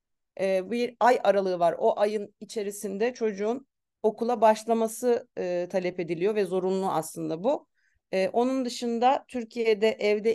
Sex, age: female, 40-59